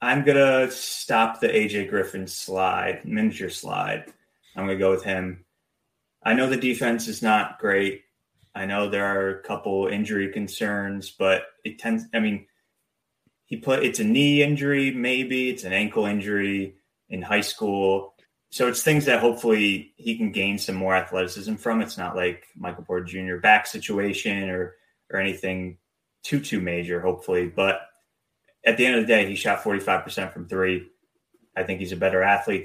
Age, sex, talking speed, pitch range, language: 20-39, male, 175 wpm, 95-110 Hz, English